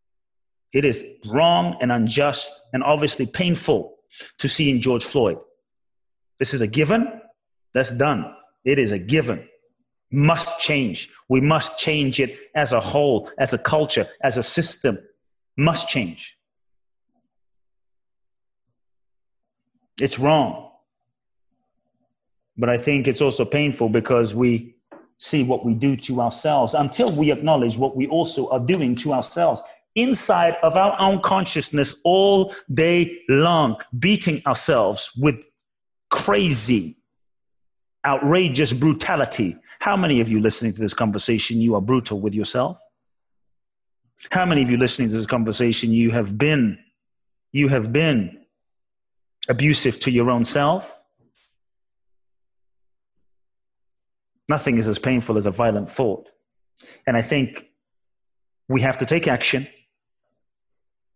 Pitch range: 120-160 Hz